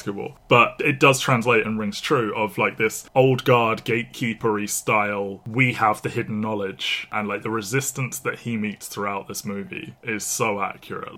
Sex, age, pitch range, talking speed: male, 20-39, 100-120 Hz, 170 wpm